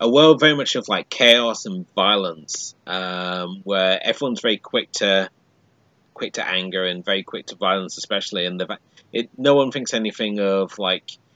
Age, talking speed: 30-49, 175 wpm